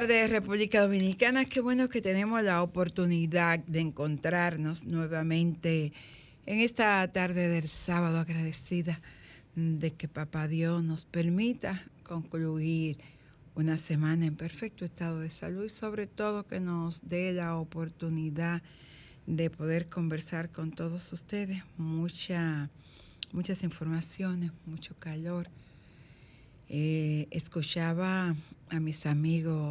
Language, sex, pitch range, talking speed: Spanish, female, 155-175 Hz, 115 wpm